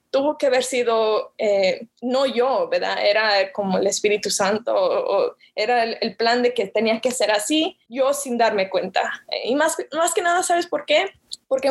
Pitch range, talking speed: 220-275 Hz, 200 wpm